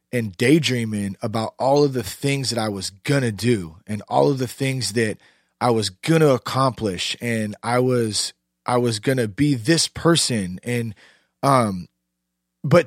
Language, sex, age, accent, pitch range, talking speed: English, male, 30-49, American, 105-140 Hz, 175 wpm